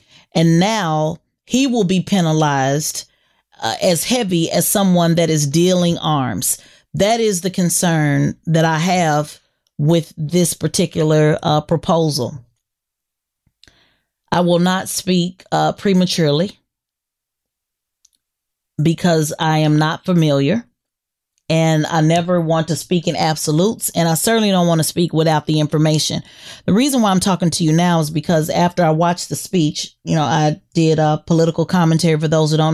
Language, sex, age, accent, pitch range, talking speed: English, female, 30-49, American, 150-175 Hz, 150 wpm